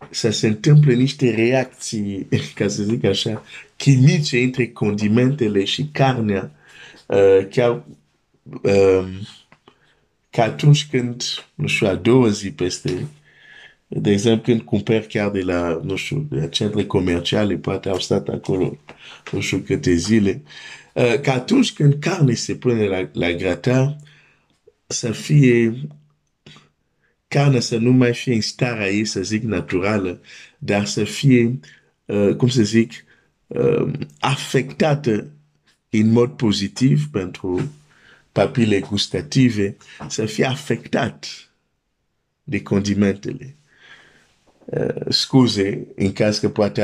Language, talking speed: Romanian, 125 wpm